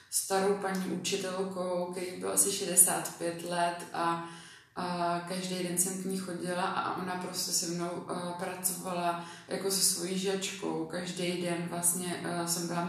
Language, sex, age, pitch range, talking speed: Czech, female, 20-39, 170-190 Hz, 160 wpm